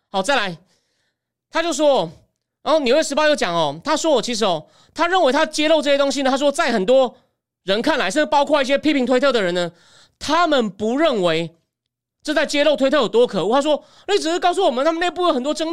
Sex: male